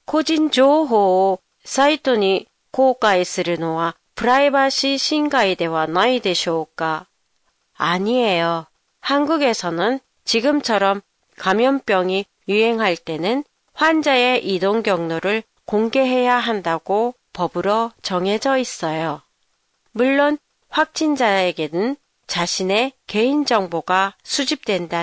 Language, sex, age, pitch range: Japanese, female, 40-59, 185-260 Hz